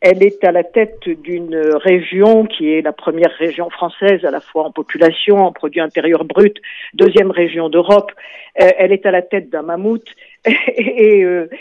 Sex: female